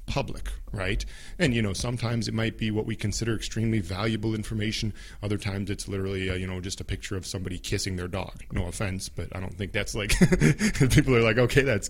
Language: English